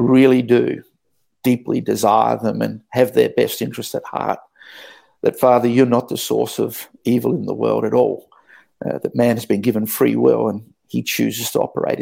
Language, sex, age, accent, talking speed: English, male, 50-69, Australian, 190 wpm